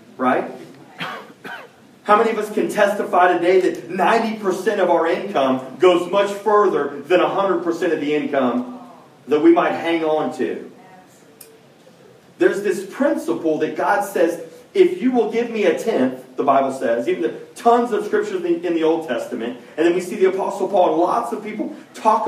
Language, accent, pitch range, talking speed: English, American, 160-235 Hz, 180 wpm